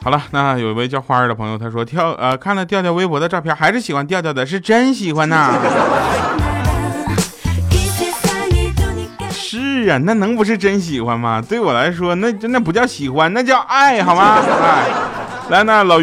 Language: Chinese